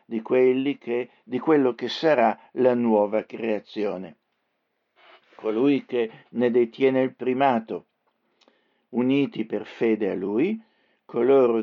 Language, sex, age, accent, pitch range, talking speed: Italian, male, 60-79, native, 115-150 Hz, 115 wpm